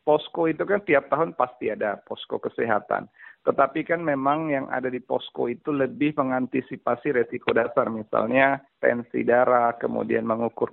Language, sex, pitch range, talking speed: Indonesian, male, 120-145 Hz, 145 wpm